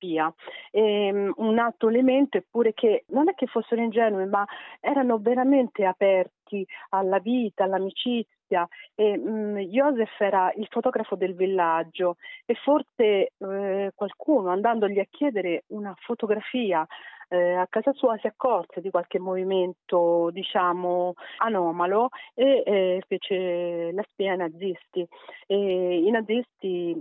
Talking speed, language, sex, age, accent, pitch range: 125 wpm, Italian, female, 40-59, native, 180-220 Hz